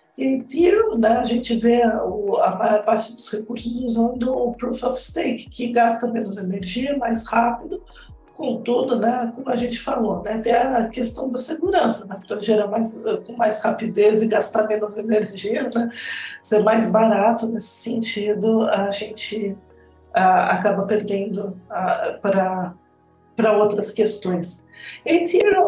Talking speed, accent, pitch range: 145 wpm, Brazilian, 205-255 Hz